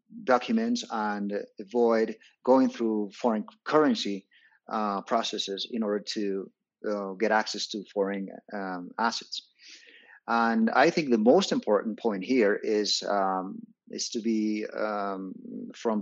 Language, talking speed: Spanish, 125 wpm